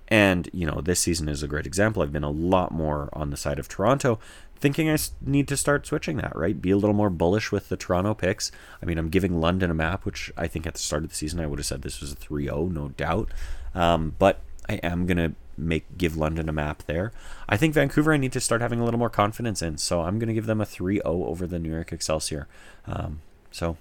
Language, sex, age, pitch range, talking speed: English, male, 30-49, 75-105 Hz, 250 wpm